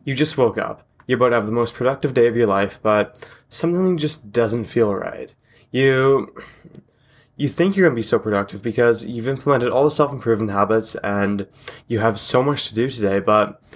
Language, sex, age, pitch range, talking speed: English, male, 20-39, 105-135 Hz, 195 wpm